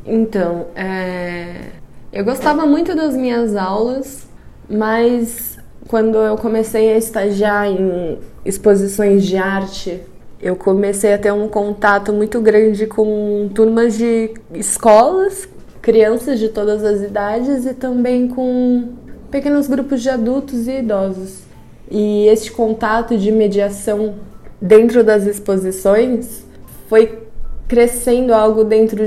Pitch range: 205-240 Hz